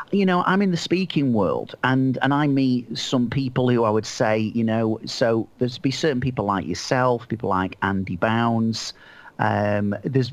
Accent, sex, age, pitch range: British, male, 40-59, 105-130 Hz